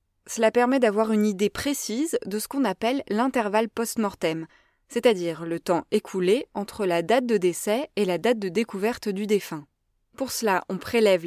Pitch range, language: 185-230 Hz, French